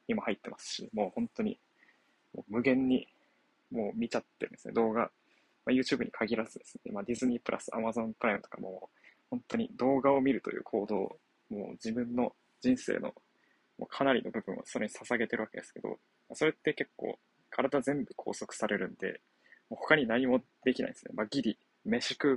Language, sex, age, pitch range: Japanese, male, 20-39, 130-160 Hz